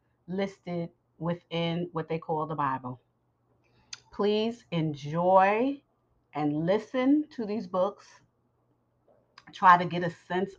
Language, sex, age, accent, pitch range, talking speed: English, female, 40-59, American, 150-180 Hz, 110 wpm